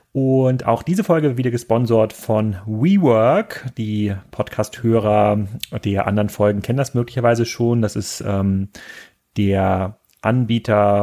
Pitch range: 105-120 Hz